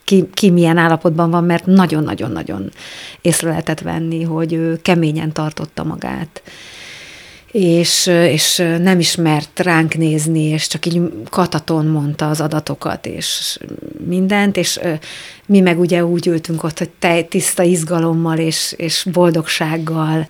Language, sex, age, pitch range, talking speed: Hungarian, female, 30-49, 160-175 Hz, 130 wpm